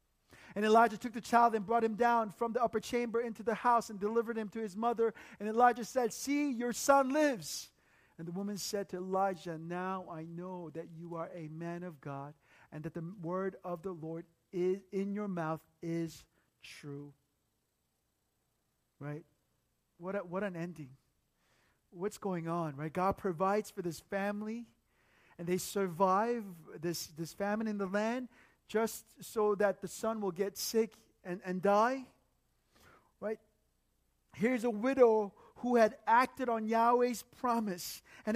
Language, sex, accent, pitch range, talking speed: English, male, American, 185-240 Hz, 165 wpm